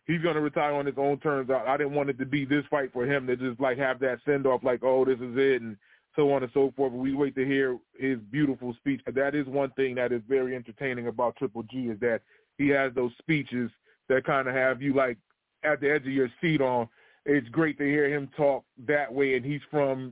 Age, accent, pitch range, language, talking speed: 20-39, American, 130-150 Hz, English, 255 wpm